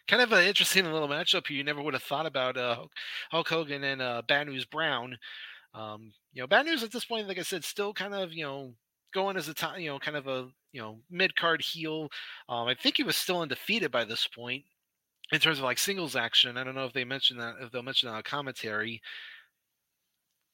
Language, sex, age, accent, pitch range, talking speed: English, male, 30-49, American, 130-170 Hz, 235 wpm